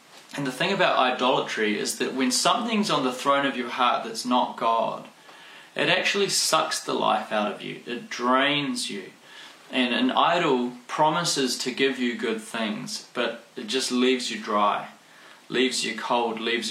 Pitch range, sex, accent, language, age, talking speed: 110-140 Hz, male, Australian, English, 20-39, 170 wpm